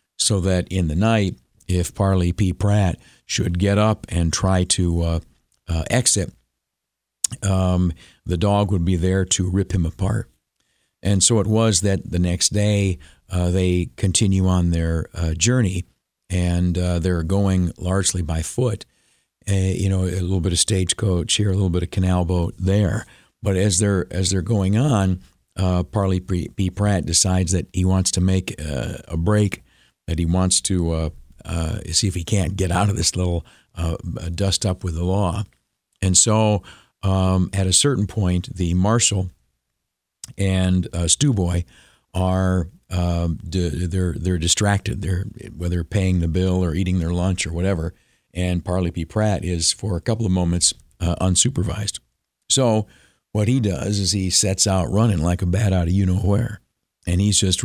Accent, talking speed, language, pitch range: American, 175 wpm, English, 85-100 Hz